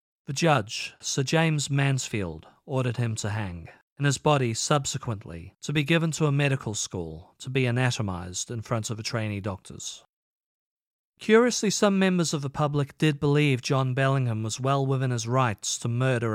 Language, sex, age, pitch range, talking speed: English, male, 40-59, 115-155 Hz, 170 wpm